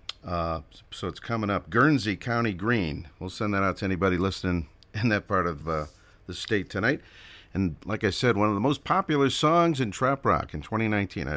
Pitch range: 90-115 Hz